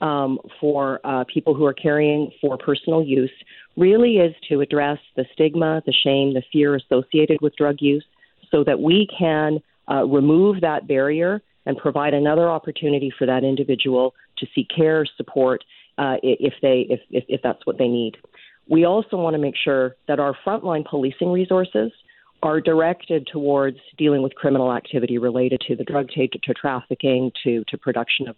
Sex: female